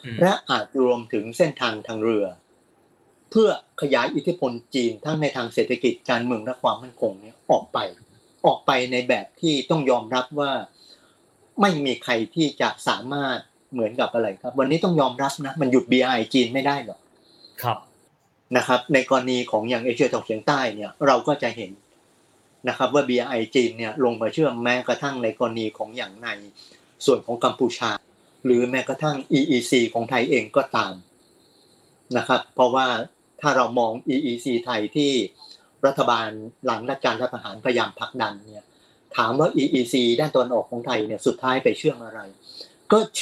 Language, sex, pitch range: Thai, male, 115-140 Hz